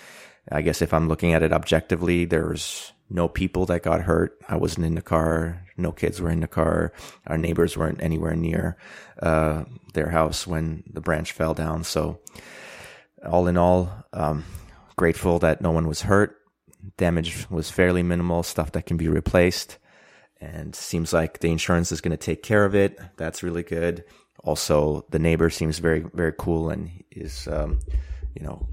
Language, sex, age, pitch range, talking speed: English, male, 30-49, 80-90 Hz, 180 wpm